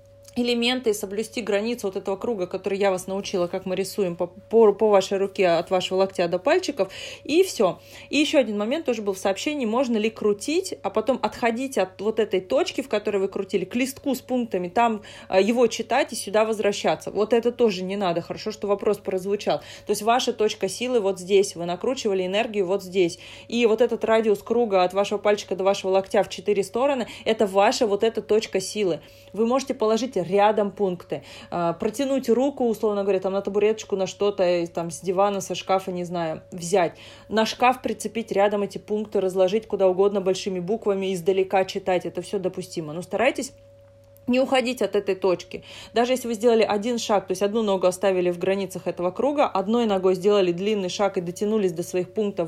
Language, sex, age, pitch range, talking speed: Russian, female, 20-39, 190-230 Hz, 195 wpm